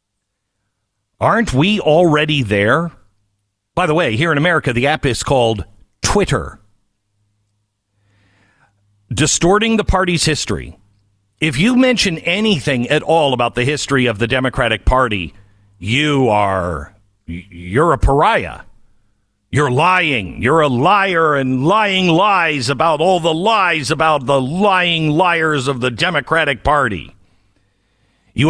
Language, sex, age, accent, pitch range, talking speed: English, male, 50-69, American, 105-165 Hz, 120 wpm